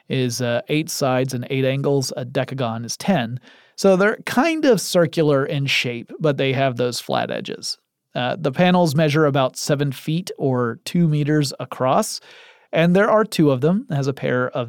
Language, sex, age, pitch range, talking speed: English, male, 30-49, 135-175 Hz, 185 wpm